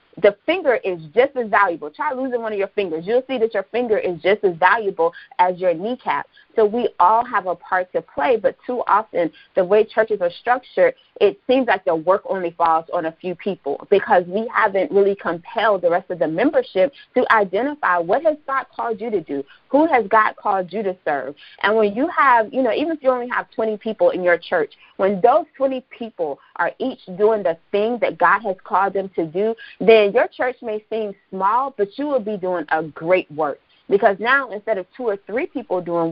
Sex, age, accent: female, 30-49, American